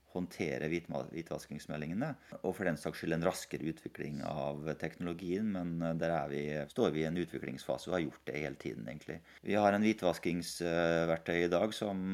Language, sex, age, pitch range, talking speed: English, male, 30-49, 80-95 Hz, 170 wpm